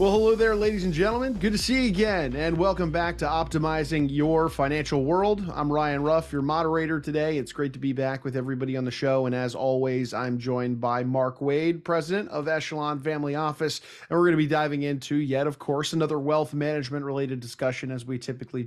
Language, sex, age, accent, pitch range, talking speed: English, male, 20-39, American, 130-165 Hz, 210 wpm